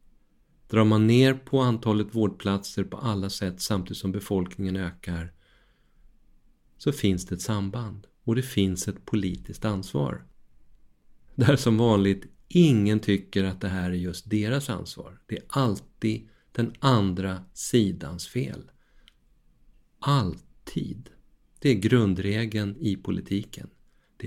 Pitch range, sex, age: 95-120 Hz, male, 50-69